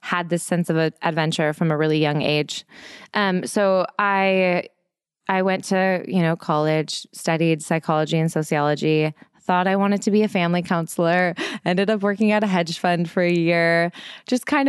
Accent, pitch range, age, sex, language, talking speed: American, 160-190 Hz, 20-39, female, English, 175 wpm